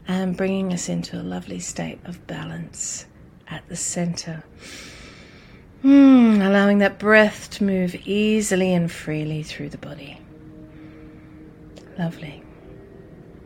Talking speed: 110 wpm